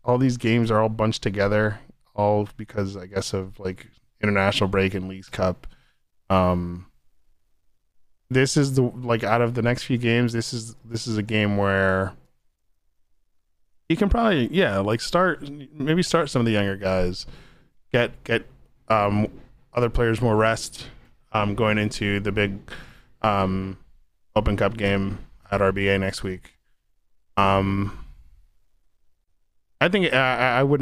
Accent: American